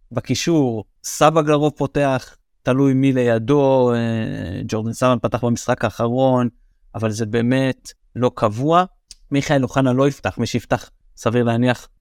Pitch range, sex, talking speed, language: 115-145 Hz, male, 125 wpm, Hebrew